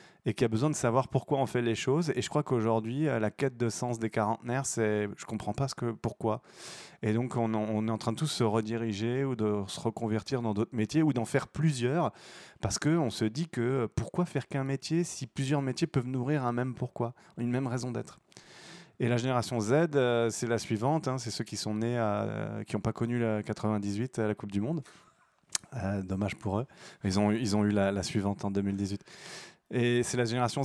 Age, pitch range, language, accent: 20-39, 110-135 Hz, French, French